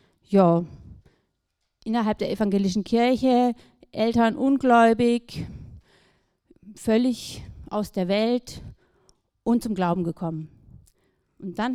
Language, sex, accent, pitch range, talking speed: German, female, German, 205-250 Hz, 85 wpm